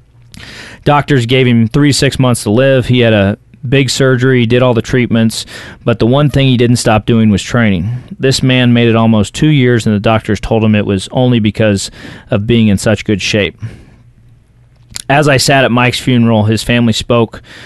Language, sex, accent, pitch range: English, male, American, 110-125 Hz